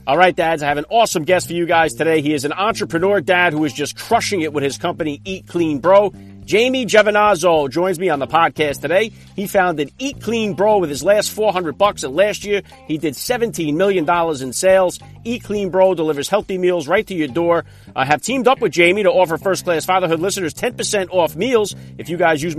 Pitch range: 155-195 Hz